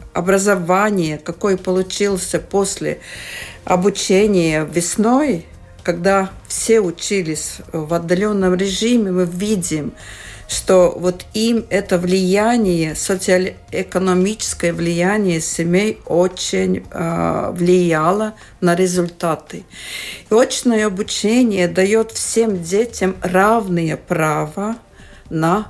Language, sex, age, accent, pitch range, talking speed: Russian, female, 50-69, native, 175-210 Hz, 80 wpm